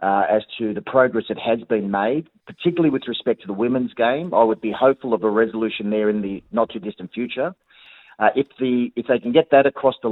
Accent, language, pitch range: Australian, English, 110-130 Hz